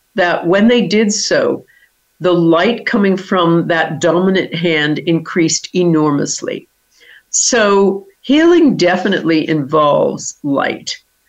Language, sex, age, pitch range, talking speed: English, female, 50-69, 165-205 Hz, 100 wpm